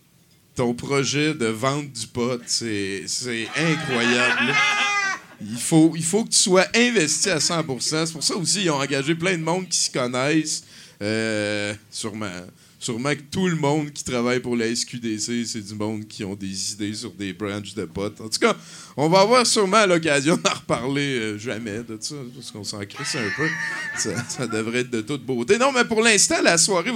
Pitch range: 115-160 Hz